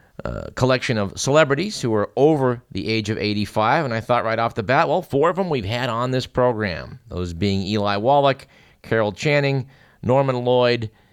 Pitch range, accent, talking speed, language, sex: 110-140 Hz, American, 190 wpm, English, male